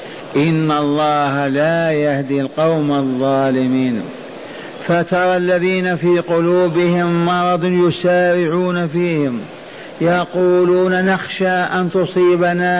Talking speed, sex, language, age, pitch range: 80 wpm, male, Arabic, 50-69, 150-175 Hz